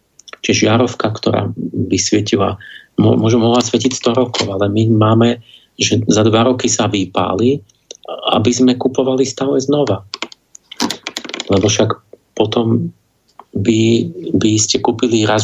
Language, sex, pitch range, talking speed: Slovak, male, 110-125 Hz, 130 wpm